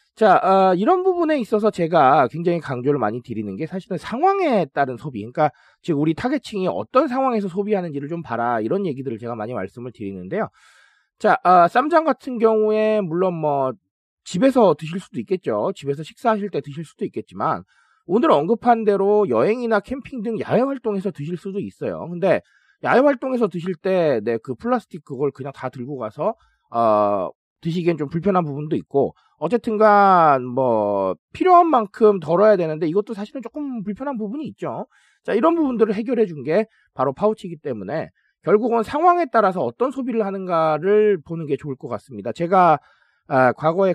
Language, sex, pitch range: Korean, male, 150-230 Hz